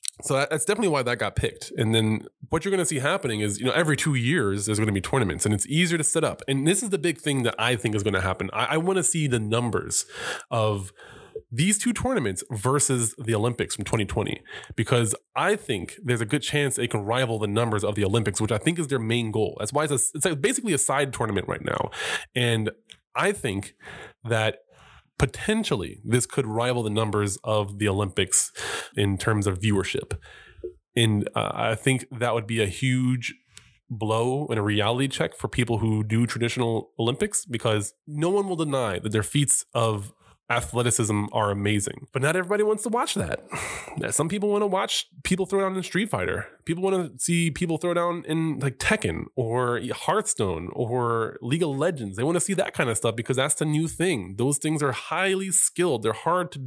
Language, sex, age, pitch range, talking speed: English, male, 20-39, 110-155 Hz, 210 wpm